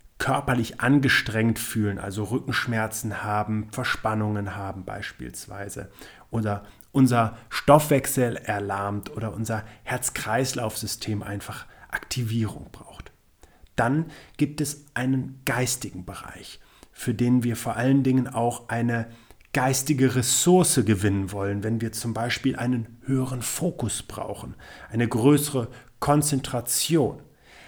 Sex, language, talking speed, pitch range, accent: male, German, 105 wpm, 105-135 Hz, German